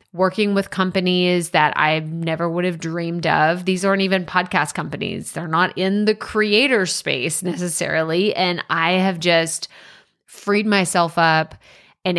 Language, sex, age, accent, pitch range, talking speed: English, female, 20-39, American, 165-195 Hz, 150 wpm